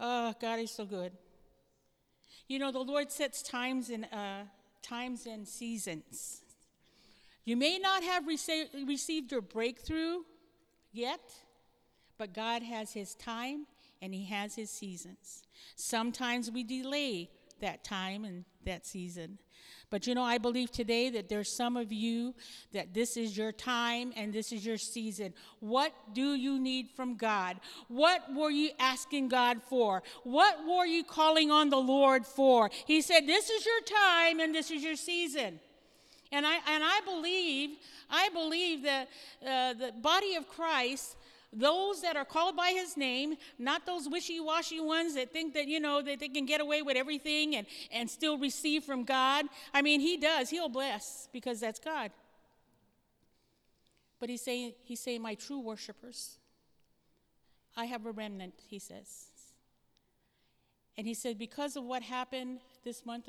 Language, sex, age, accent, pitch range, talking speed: English, female, 50-69, American, 225-295 Hz, 160 wpm